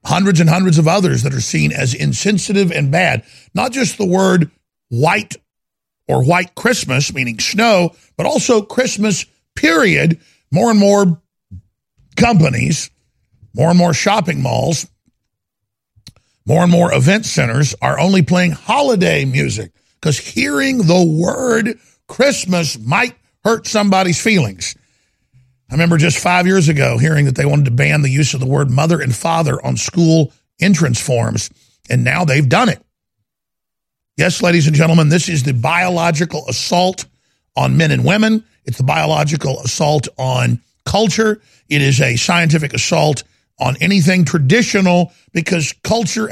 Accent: American